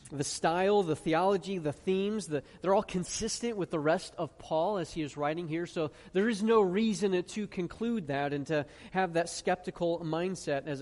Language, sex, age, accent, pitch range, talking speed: English, male, 30-49, American, 150-195 Hz, 190 wpm